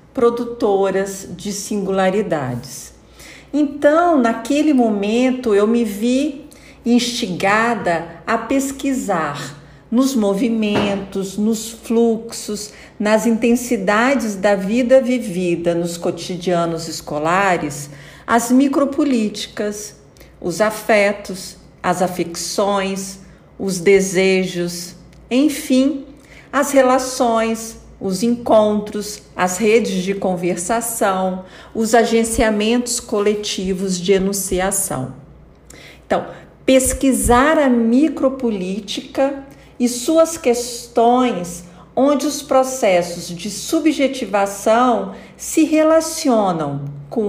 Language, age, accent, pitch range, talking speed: Portuguese, 50-69, Brazilian, 195-255 Hz, 75 wpm